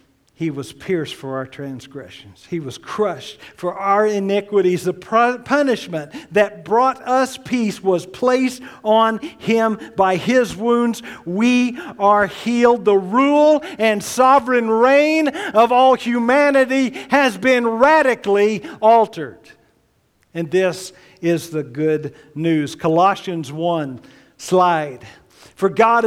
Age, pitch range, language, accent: 50-69, 195-260 Hz, English, American